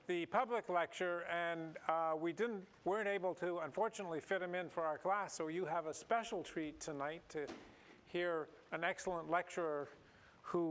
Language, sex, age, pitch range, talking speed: English, male, 40-59, 165-210 Hz, 165 wpm